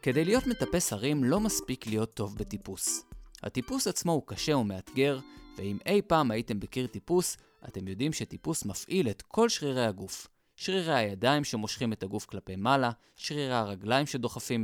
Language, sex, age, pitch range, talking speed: Hebrew, male, 20-39, 105-150 Hz, 155 wpm